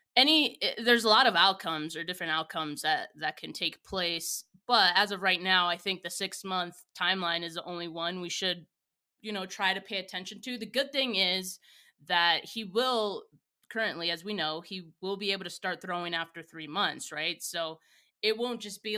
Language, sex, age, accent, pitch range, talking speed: English, female, 20-39, American, 170-220 Hz, 205 wpm